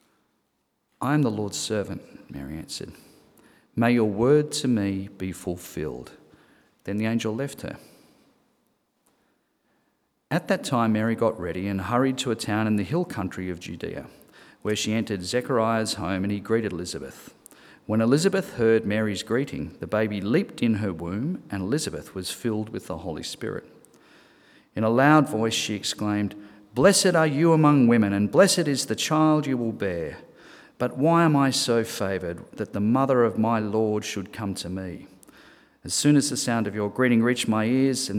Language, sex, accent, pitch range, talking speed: English, male, Australian, 100-125 Hz, 175 wpm